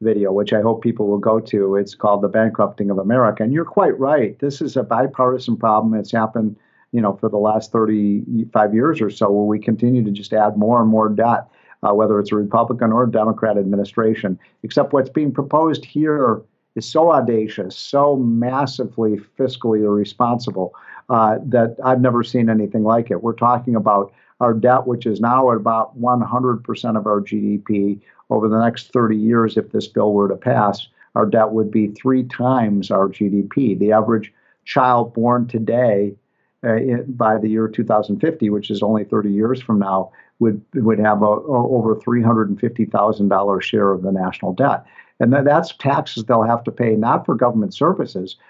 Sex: male